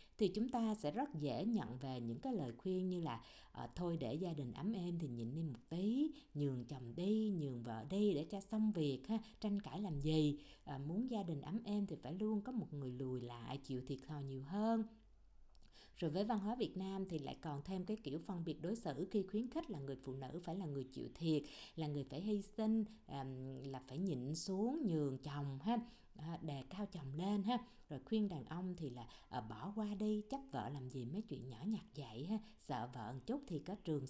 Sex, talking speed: female, 225 wpm